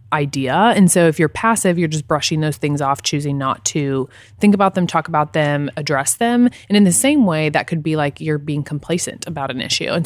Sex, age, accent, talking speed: female, 20-39, American, 235 wpm